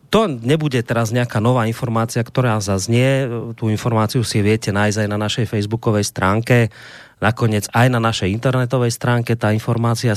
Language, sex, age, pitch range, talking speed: Slovak, male, 30-49, 110-130 Hz, 155 wpm